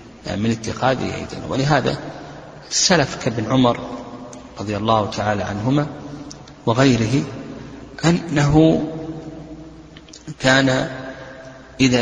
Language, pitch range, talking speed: Arabic, 110-145 Hz, 75 wpm